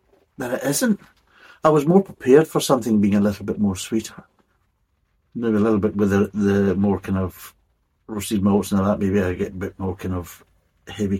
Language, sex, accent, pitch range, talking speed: English, male, British, 95-110 Hz, 215 wpm